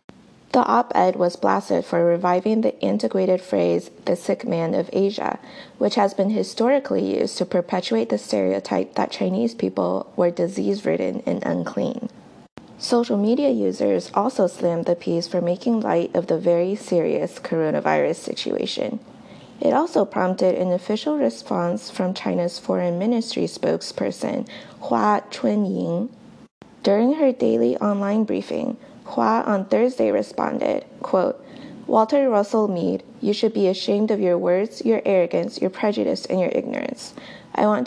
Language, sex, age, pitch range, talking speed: English, female, 20-39, 180-230 Hz, 140 wpm